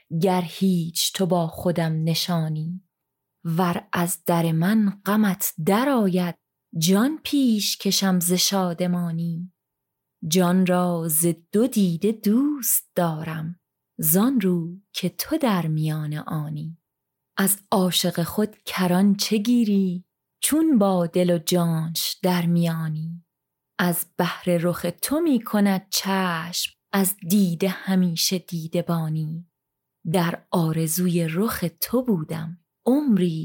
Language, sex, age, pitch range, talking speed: Persian, female, 30-49, 165-195 Hz, 110 wpm